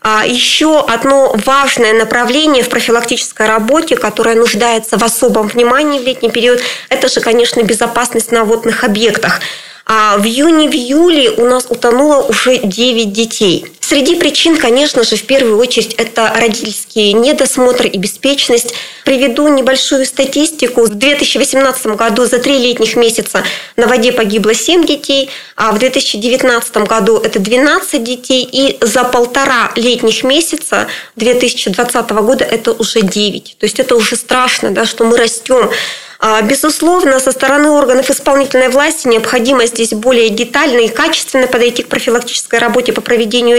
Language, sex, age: Russian, female, 20-39